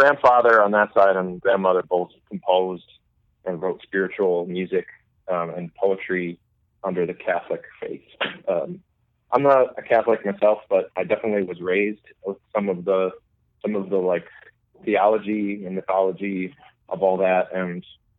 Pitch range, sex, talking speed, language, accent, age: 95-115 Hz, male, 150 wpm, English, American, 20-39